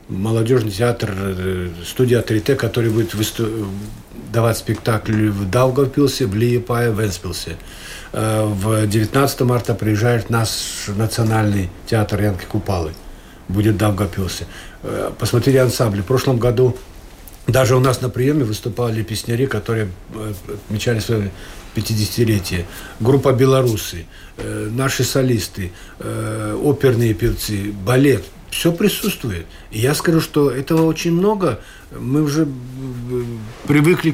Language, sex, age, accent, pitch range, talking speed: Russian, male, 50-69, native, 100-130 Hz, 110 wpm